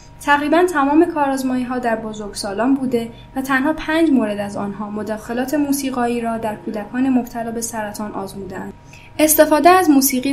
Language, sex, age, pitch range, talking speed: Persian, female, 10-29, 225-270 Hz, 140 wpm